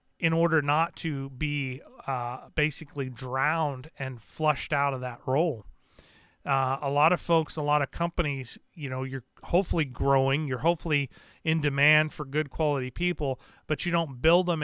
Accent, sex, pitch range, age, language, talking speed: American, male, 135-155 Hz, 40-59, English, 170 wpm